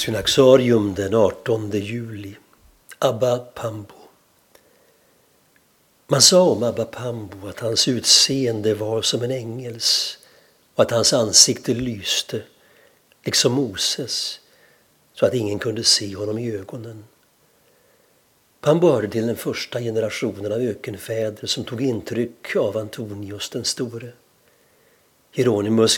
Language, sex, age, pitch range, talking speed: Swedish, male, 60-79, 105-125 Hz, 115 wpm